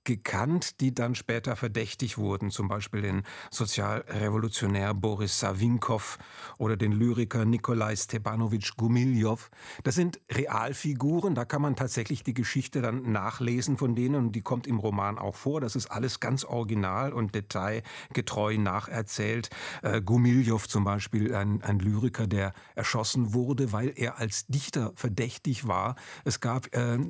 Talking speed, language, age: 140 wpm, German, 50-69